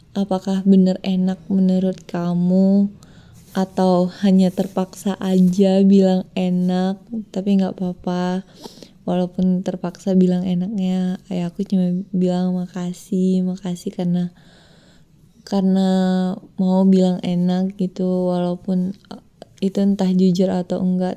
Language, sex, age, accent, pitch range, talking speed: Indonesian, female, 20-39, native, 180-205 Hz, 100 wpm